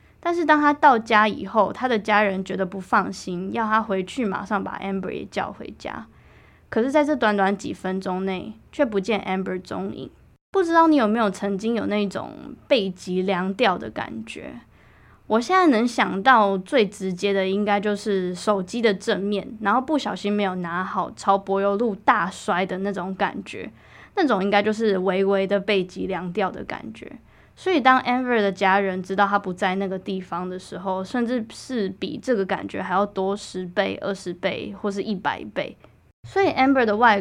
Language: Chinese